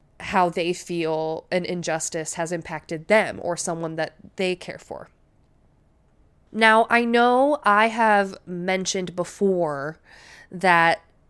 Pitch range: 170-220 Hz